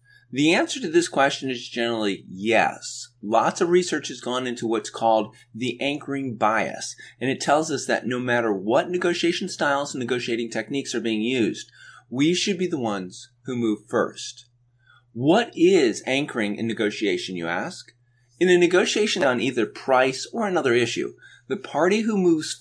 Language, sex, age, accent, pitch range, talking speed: English, male, 30-49, American, 115-140 Hz, 165 wpm